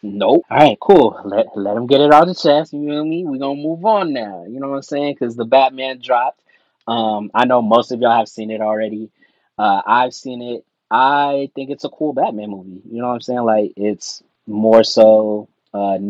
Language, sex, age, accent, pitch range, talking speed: English, male, 20-39, American, 105-125 Hz, 240 wpm